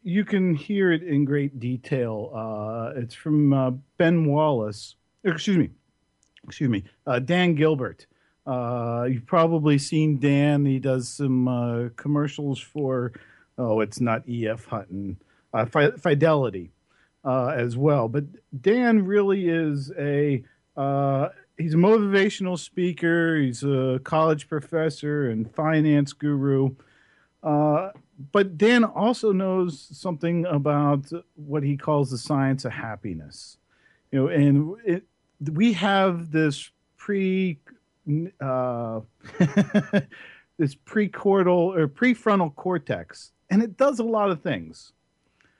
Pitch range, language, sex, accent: 135-185 Hz, English, male, American